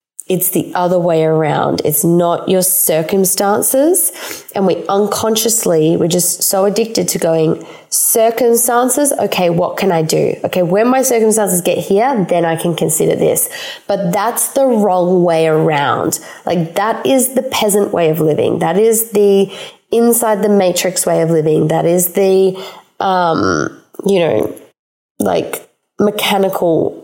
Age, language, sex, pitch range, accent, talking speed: 20-39, English, female, 165-210 Hz, Australian, 145 wpm